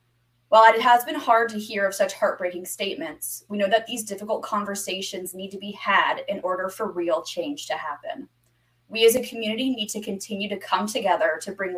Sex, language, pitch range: female, English, 175-220 Hz